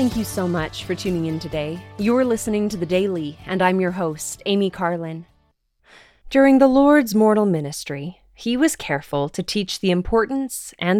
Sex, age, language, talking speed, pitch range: female, 20-39, English, 175 wpm, 165-210 Hz